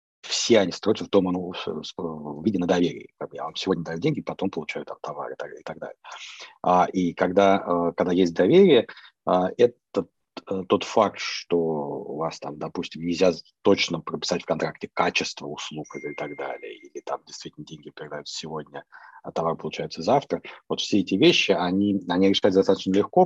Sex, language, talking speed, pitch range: male, Russian, 155 wpm, 85-100 Hz